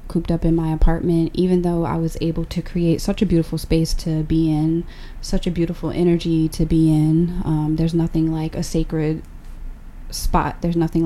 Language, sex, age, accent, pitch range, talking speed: English, female, 20-39, American, 160-175 Hz, 190 wpm